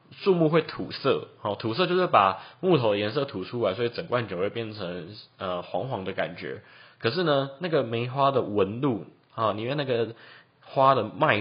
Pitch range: 110-155 Hz